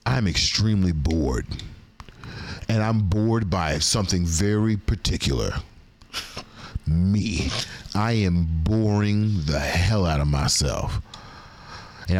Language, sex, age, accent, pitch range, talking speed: English, male, 40-59, American, 90-120 Hz, 100 wpm